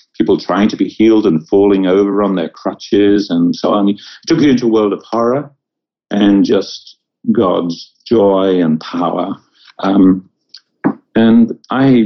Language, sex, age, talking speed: English, male, 50-69, 155 wpm